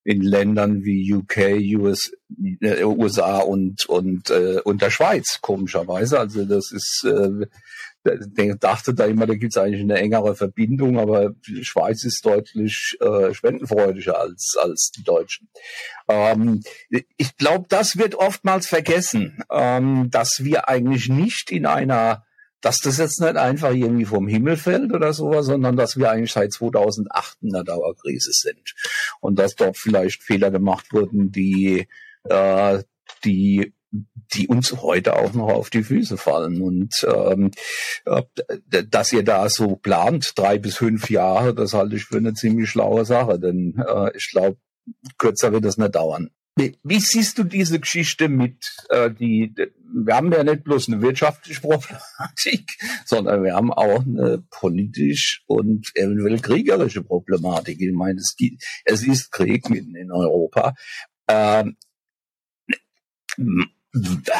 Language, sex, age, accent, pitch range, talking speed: German, male, 50-69, German, 100-155 Hz, 145 wpm